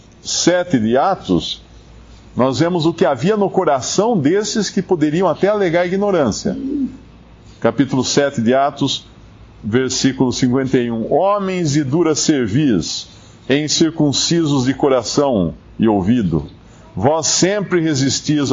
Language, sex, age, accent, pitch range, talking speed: Portuguese, male, 50-69, Brazilian, 125-175 Hz, 115 wpm